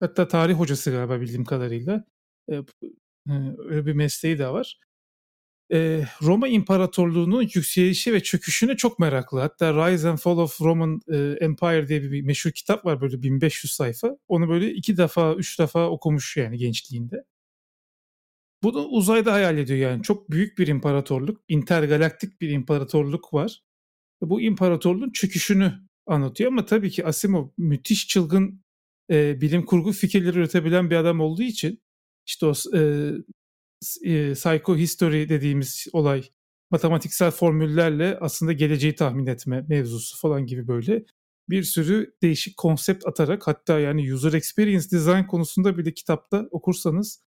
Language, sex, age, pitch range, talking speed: Turkish, male, 40-59, 150-190 Hz, 135 wpm